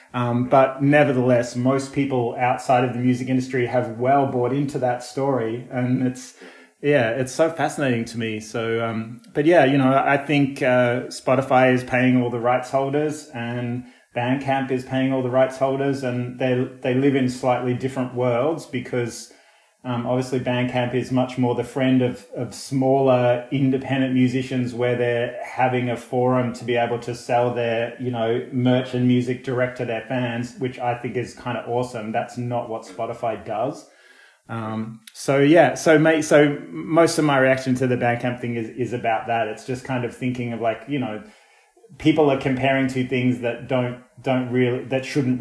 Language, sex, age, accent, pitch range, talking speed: English, male, 30-49, Australian, 120-130 Hz, 185 wpm